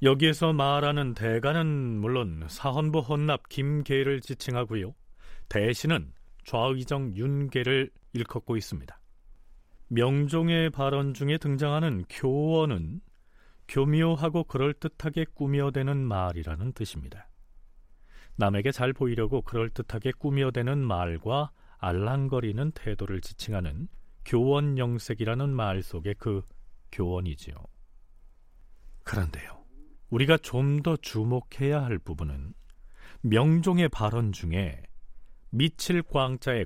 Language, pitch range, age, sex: Korean, 100-145 Hz, 40-59, male